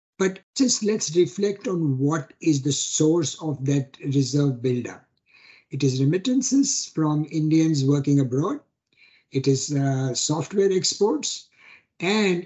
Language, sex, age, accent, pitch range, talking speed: English, male, 60-79, Indian, 145-185 Hz, 125 wpm